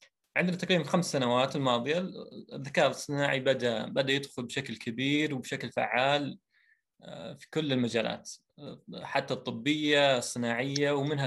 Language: Arabic